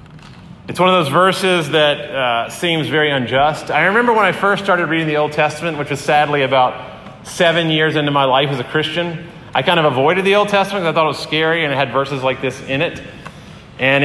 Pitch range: 130-170 Hz